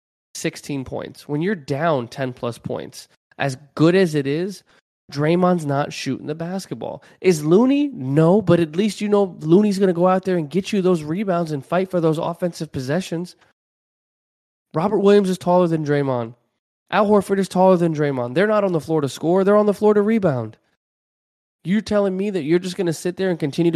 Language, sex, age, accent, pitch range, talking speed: English, male, 20-39, American, 125-170 Hz, 200 wpm